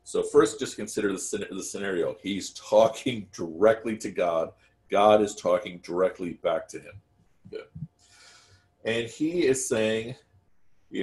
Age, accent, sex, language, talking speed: 50-69, American, male, English, 135 wpm